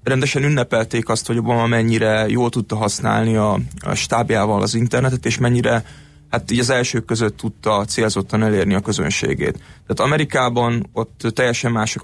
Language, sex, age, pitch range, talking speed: Hungarian, male, 30-49, 110-125 Hz, 150 wpm